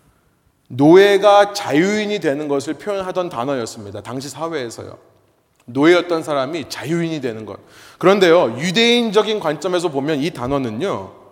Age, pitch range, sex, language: 30-49, 145-230 Hz, male, Korean